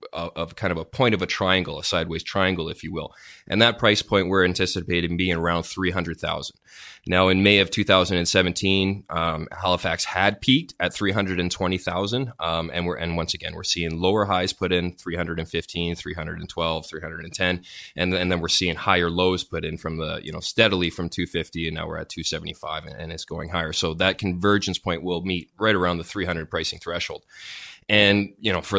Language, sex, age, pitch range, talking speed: English, male, 20-39, 85-95 Hz, 190 wpm